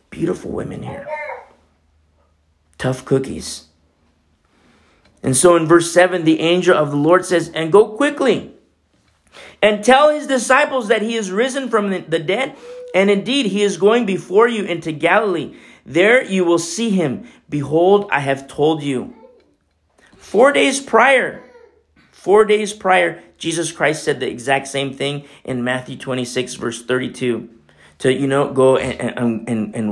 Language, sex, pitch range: English, male, 115-190 Hz